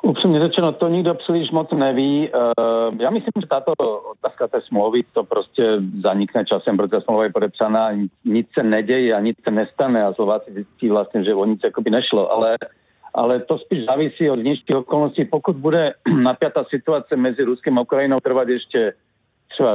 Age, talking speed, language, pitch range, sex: 50-69, 180 wpm, Czech, 120-145 Hz, male